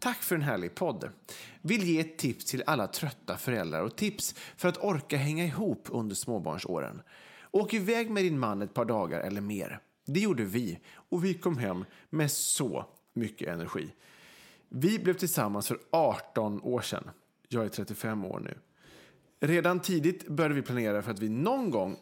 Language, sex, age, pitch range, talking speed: English, male, 30-49, 110-175 Hz, 175 wpm